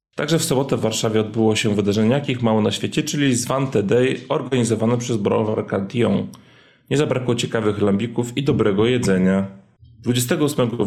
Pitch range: 105-125 Hz